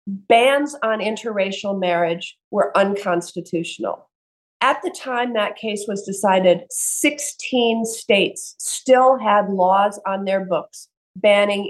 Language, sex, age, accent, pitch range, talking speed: English, female, 40-59, American, 190-255 Hz, 115 wpm